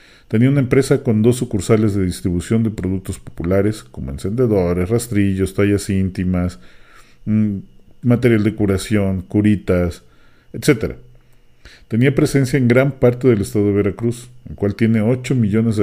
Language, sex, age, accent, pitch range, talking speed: English, male, 40-59, Mexican, 95-120 Hz, 135 wpm